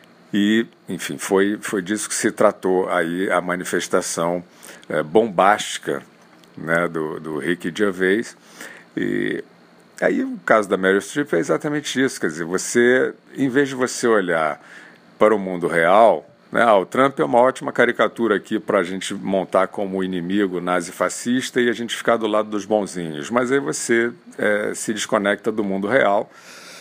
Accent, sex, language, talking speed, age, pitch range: Brazilian, male, Portuguese, 165 wpm, 50-69, 90-120 Hz